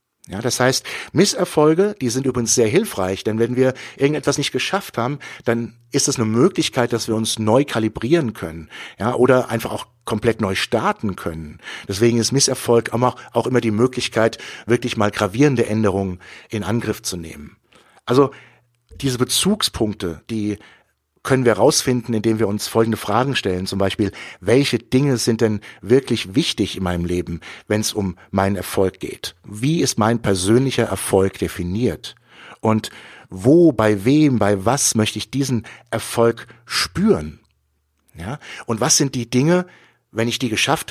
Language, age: German, 60-79